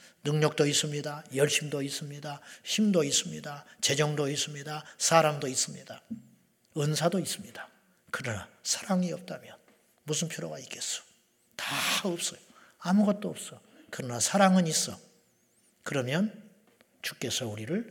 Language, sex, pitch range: Korean, male, 135-185 Hz